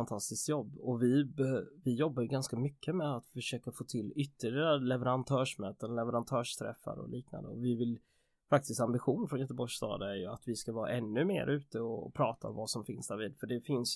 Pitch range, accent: 125-155 Hz, native